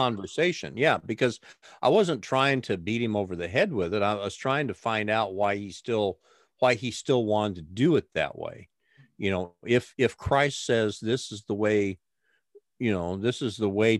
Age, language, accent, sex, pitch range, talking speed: 50-69, English, American, male, 100-130 Hz, 205 wpm